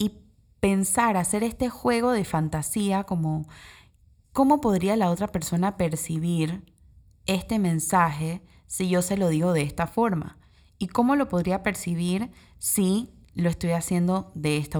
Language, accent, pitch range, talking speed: Spanish, Venezuelan, 160-200 Hz, 140 wpm